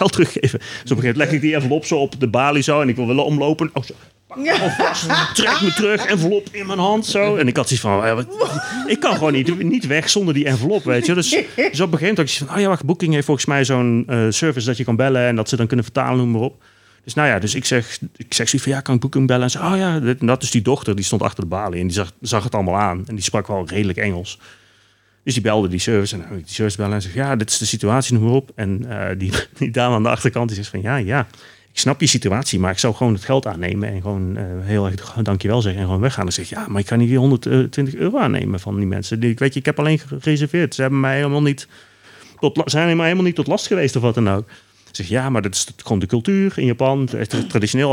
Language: Dutch